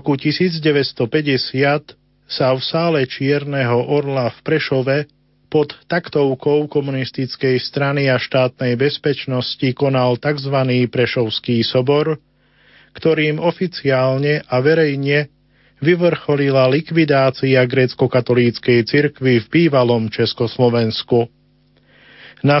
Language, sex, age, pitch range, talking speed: Slovak, male, 40-59, 125-150 Hz, 90 wpm